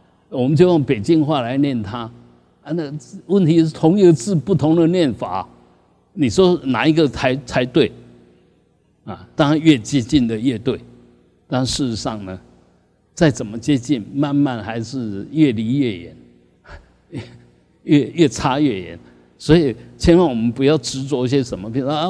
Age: 50-69